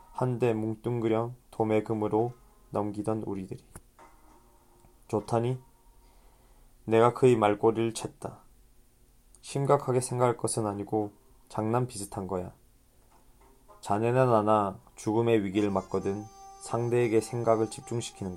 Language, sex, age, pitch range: Korean, male, 20-39, 105-120 Hz